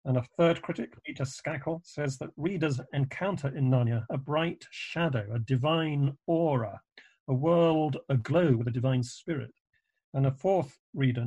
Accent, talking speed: British, 155 wpm